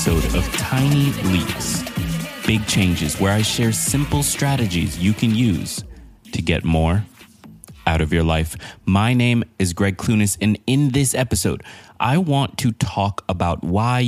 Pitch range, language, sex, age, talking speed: 90-110 Hz, English, male, 30-49, 155 wpm